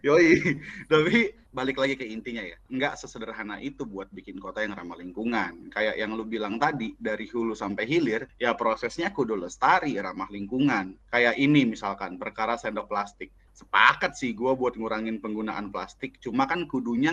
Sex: male